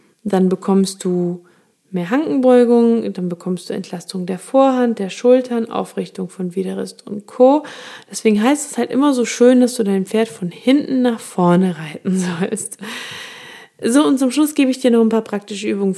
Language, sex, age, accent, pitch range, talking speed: German, female, 20-39, German, 195-250 Hz, 175 wpm